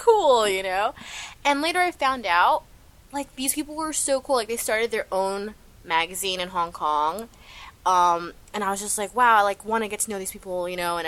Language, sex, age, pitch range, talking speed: English, female, 20-39, 160-220 Hz, 225 wpm